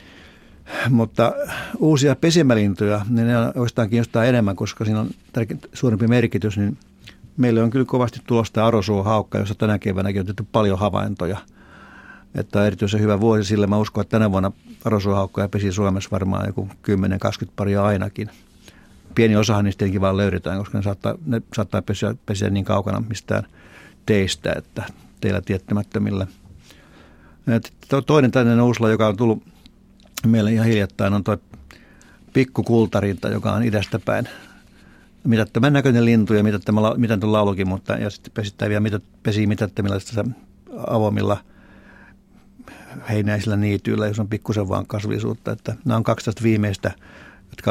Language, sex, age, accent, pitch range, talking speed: Finnish, male, 60-79, native, 100-115 Hz, 135 wpm